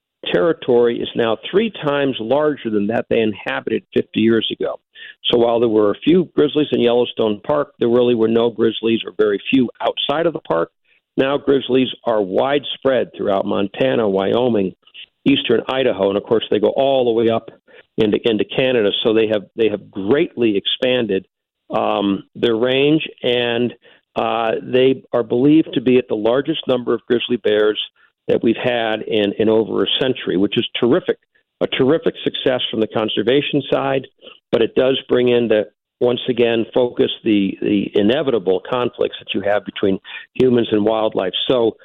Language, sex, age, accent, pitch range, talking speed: English, male, 50-69, American, 110-135 Hz, 170 wpm